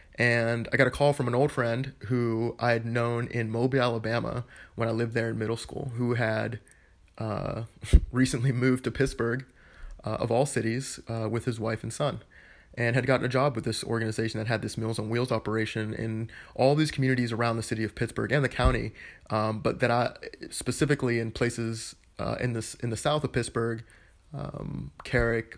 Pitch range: 110-125 Hz